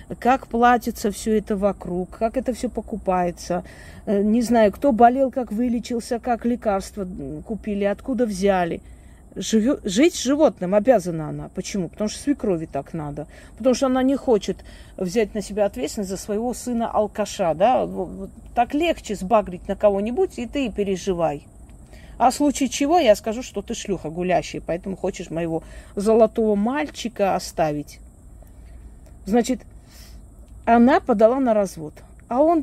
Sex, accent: female, native